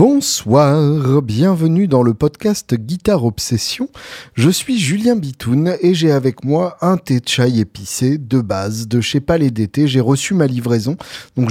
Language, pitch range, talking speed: French, 125-160 Hz, 160 wpm